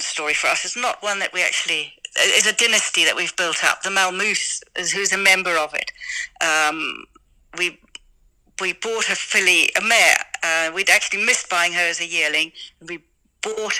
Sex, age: female, 60-79